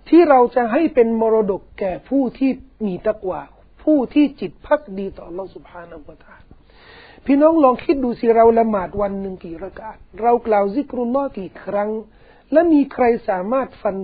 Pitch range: 205-265 Hz